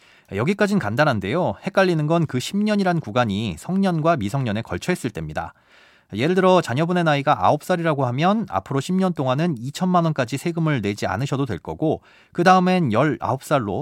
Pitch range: 120-180 Hz